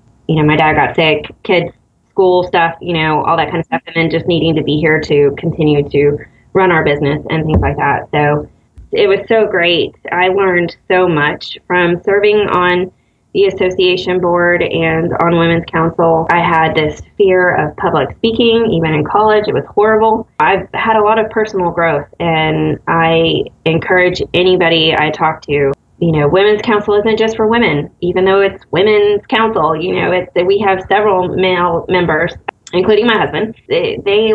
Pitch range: 160-195 Hz